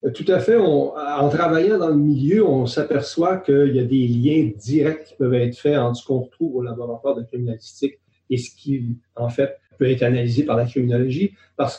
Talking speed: 210 wpm